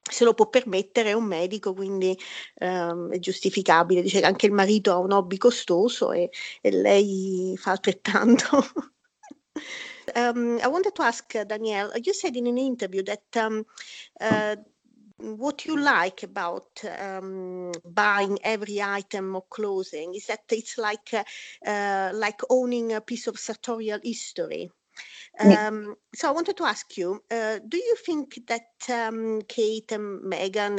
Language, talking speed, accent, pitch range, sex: Italian, 140 wpm, native, 190-240 Hz, female